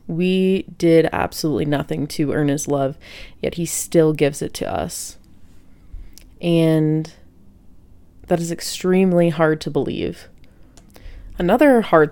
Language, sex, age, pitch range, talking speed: English, female, 20-39, 100-165 Hz, 120 wpm